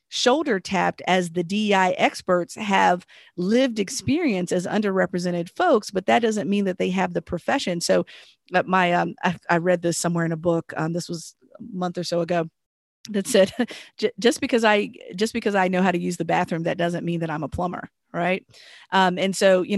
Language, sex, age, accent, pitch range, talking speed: English, female, 40-59, American, 170-205 Hz, 200 wpm